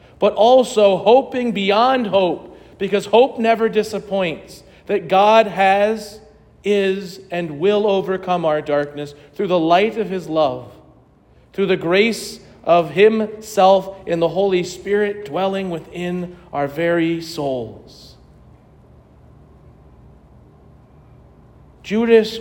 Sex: male